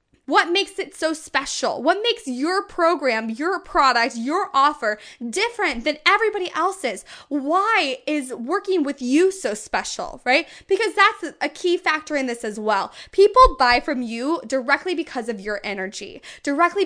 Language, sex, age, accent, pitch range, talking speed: English, female, 10-29, American, 260-360 Hz, 155 wpm